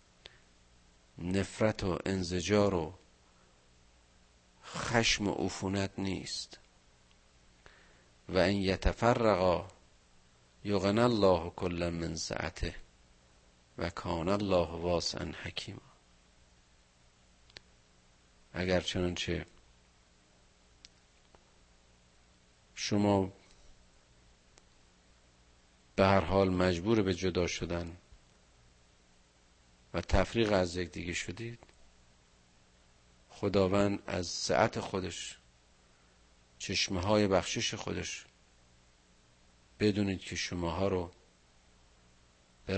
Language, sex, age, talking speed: Persian, male, 50-69, 70 wpm